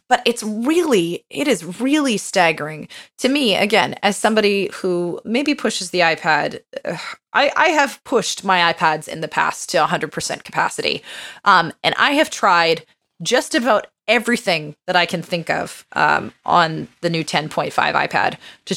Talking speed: 155 wpm